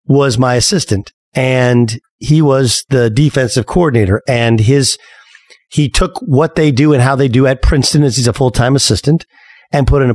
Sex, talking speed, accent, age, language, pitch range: male, 185 wpm, American, 40-59, English, 120-150 Hz